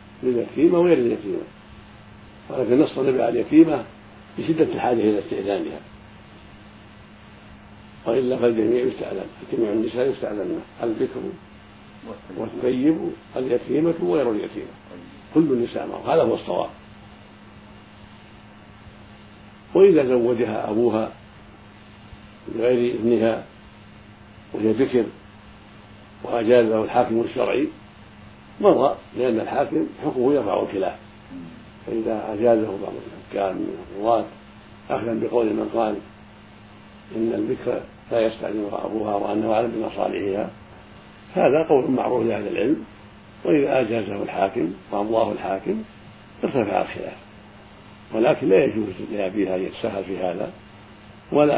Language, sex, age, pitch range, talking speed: Arabic, male, 60-79, 105-120 Hz, 95 wpm